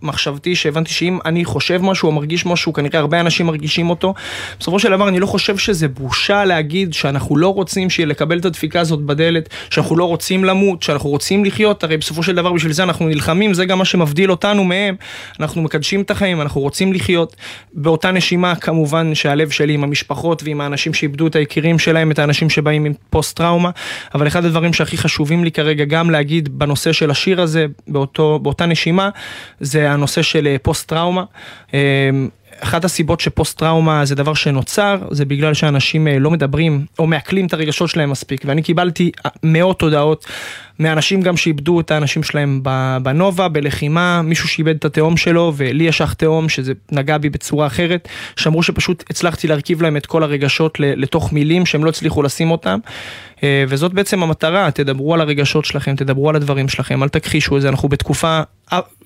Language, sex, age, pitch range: Hebrew, male, 20-39, 145-175 Hz